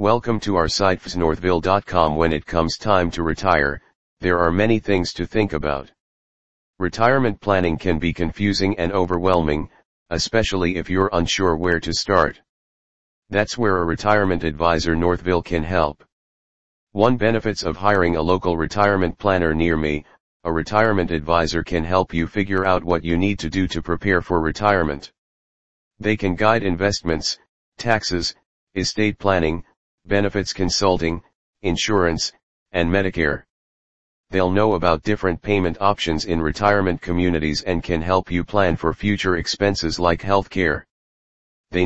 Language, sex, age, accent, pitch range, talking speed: English, male, 40-59, American, 80-100 Hz, 145 wpm